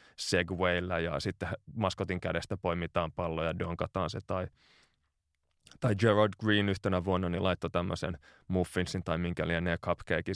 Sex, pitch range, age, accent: male, 90-105 Hz, 20-39, native